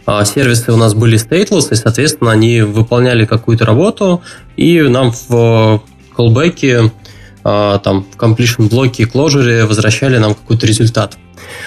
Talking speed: 125 wpm